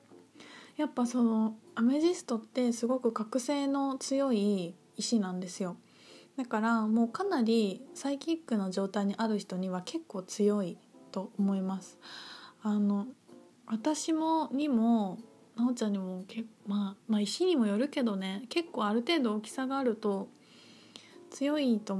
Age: 20-39